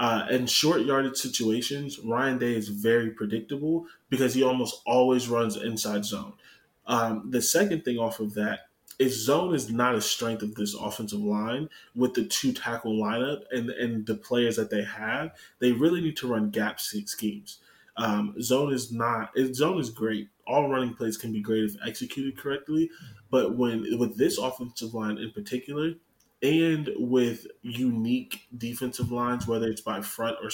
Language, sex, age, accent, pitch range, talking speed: English, male, 20-39, American, 110-130 Hz, 170 wpm